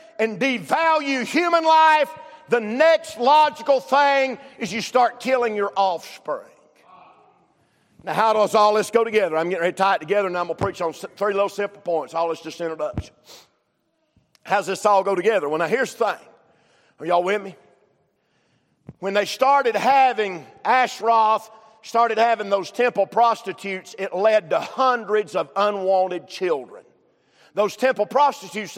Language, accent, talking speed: English, American, 165 wpm